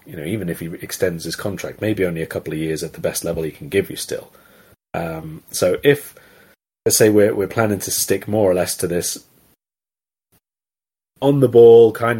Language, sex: English, male